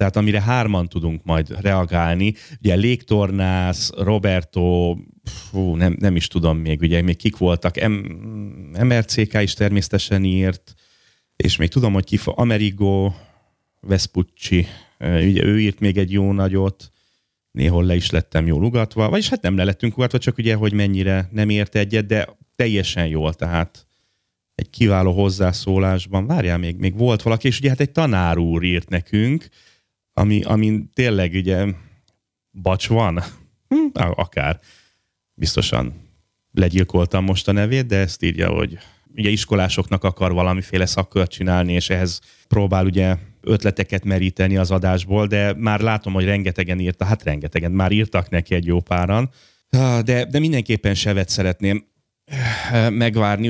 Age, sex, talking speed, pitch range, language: 30-49, male, 140 wpm, 90-110 Hz, Hungarian